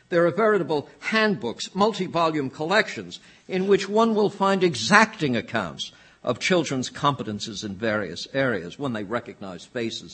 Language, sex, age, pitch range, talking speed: English, male, 60-79, 125-190 Hz, 135 wpm